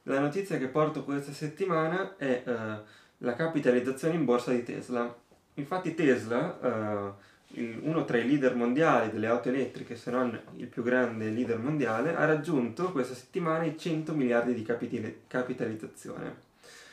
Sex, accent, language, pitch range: male, native, Italian, 115-150 Hz